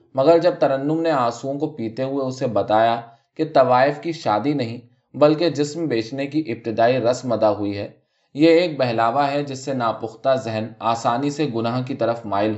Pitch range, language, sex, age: 110-155 Hz, Urdu, male, 20-39